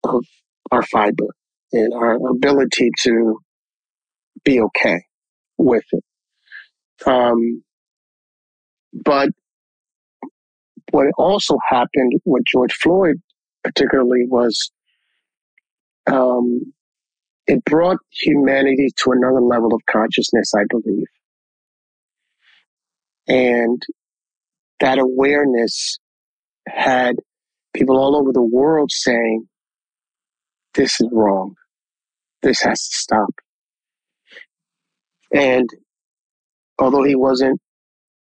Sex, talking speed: male, 85 wpm